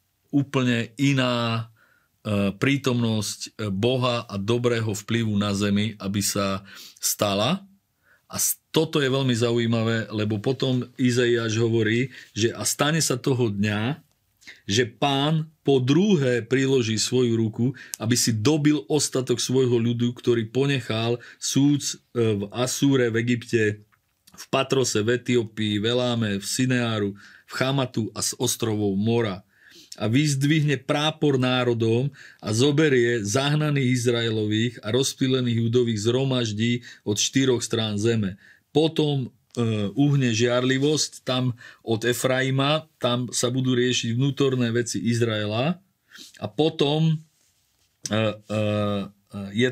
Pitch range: 110-130 Hz